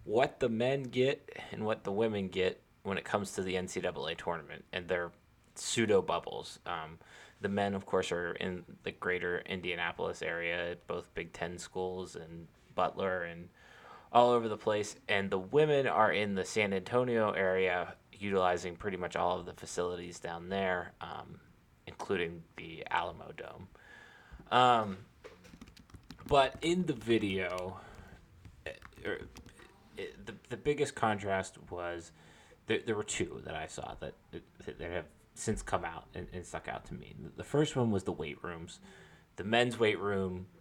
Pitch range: 90-110 Hz